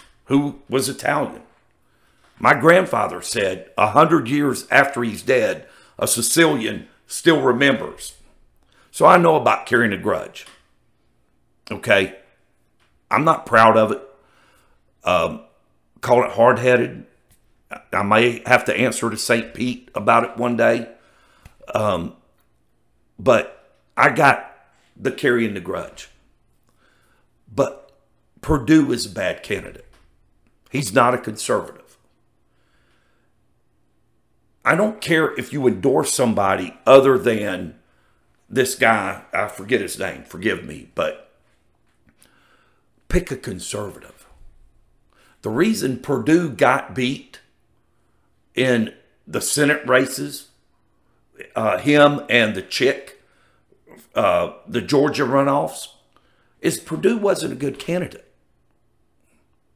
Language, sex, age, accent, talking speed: English, male, 60-79, American, 110 wpm